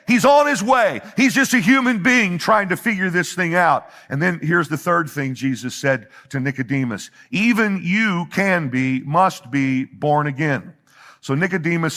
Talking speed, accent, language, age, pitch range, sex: 175 wpm, American, English, 50-69, 145-215 Hz, male